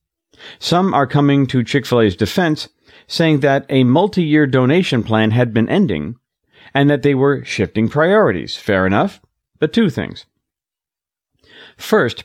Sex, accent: male, American